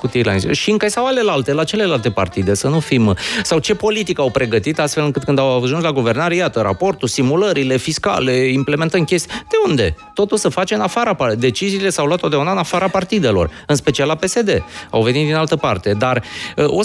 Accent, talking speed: native, 195 wpm